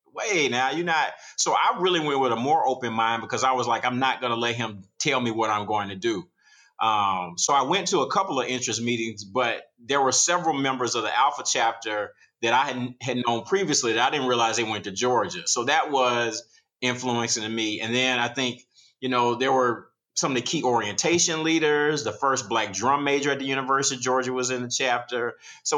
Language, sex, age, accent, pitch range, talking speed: English, male, 30-49, American, 115-135 Hz, 225 wpm